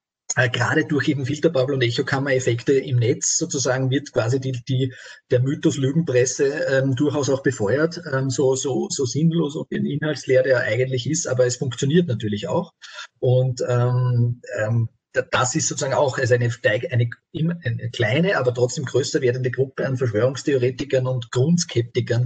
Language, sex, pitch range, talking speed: German, male, 120-140 Hz, 150 wpm